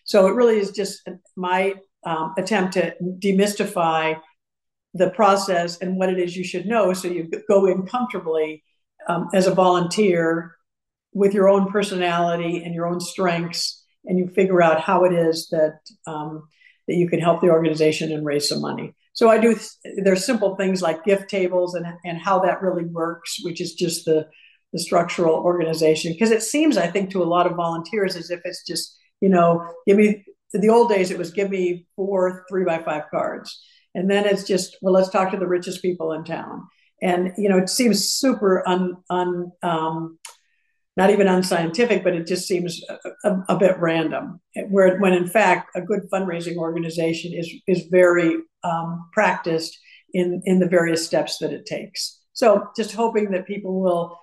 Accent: American